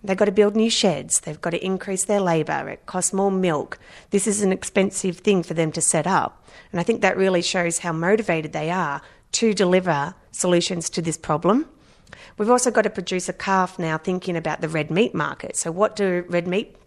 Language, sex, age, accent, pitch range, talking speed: English, female, 30-49, Australian, 160-200 Hz, 215 wpm